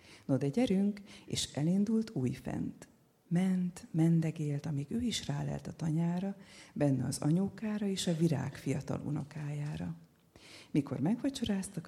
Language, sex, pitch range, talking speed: Hungarian, female, 135-175 Hz, 120 wpm